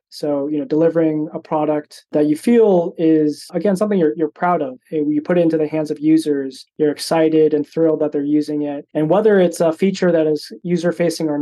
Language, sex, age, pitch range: Chinese, male, 20-39, 150-170 Hz